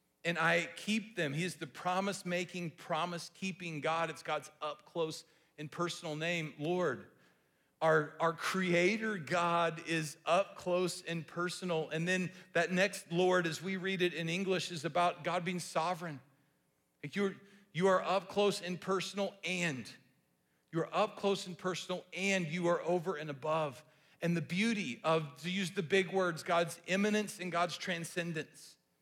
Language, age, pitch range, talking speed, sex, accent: English, 40-59, 160-190 Hz, 155 wpm, male, American